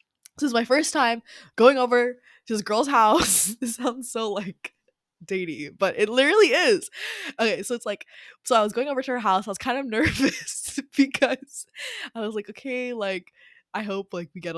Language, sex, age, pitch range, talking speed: English, female, 10-29, 170-230 Hz, 200 wpm